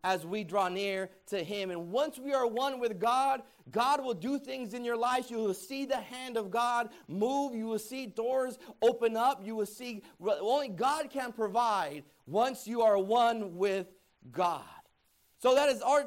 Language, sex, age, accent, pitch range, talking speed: English, male, 30-49, American, 210-250 Hz, 190 wpm